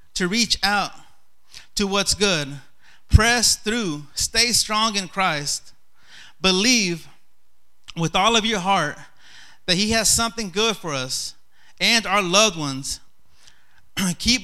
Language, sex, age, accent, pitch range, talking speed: English, male, 30-49, American, 170-215 Hz, 125 wpm